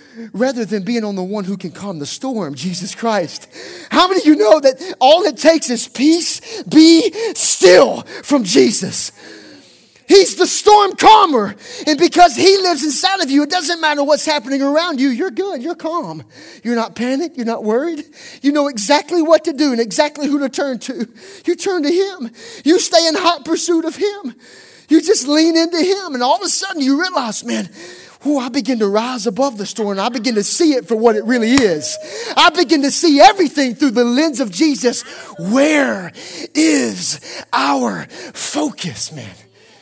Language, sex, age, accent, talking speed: English, male, 30-49, American, 190 wpm